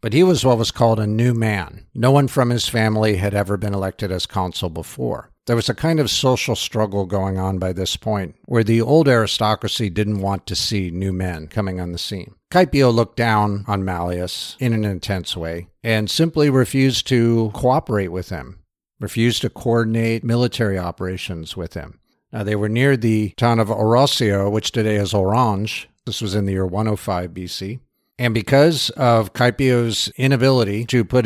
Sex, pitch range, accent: male, 95-120 Hz, American